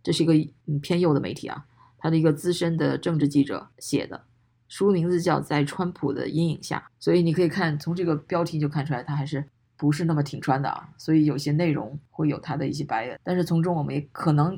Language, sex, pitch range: Chinese, female, 140-160 Hz